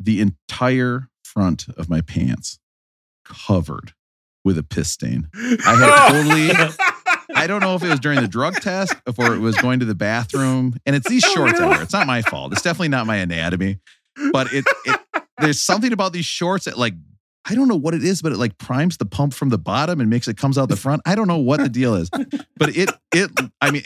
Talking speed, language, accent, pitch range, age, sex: 225 wpm, English, American, 105-155 Hz, 40-59, male